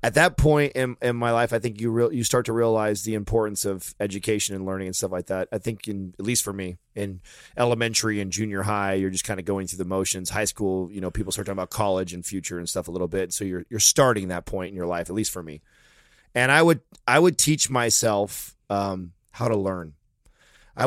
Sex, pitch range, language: male, 100-120 Hz, English